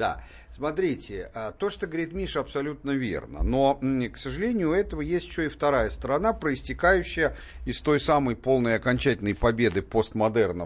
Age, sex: 50-69, male